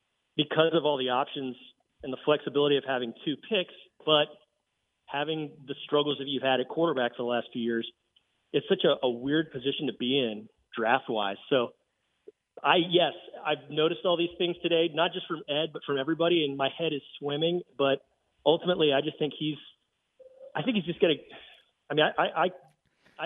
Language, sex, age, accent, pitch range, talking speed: English, male, 30-49, American, 125-160 Hz, 190 wpm